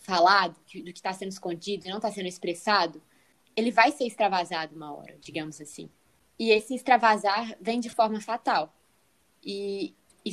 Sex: female